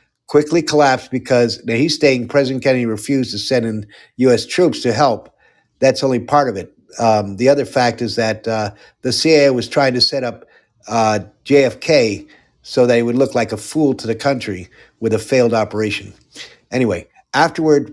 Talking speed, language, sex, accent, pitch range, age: 180 wpm, English, male, American, 115-145 Hz, 50-69